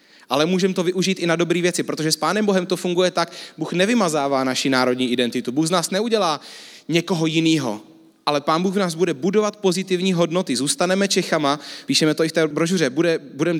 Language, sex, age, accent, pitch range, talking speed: Czech, male, 30-49, native, 155-190 Hz, 195 wpm